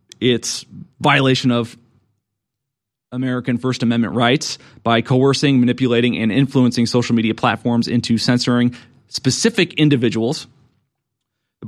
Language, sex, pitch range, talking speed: English, male, 115-130 Hz, 105 wpm